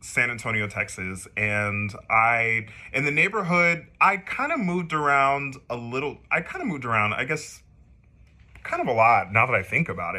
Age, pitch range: 30-49, 100-135 Hz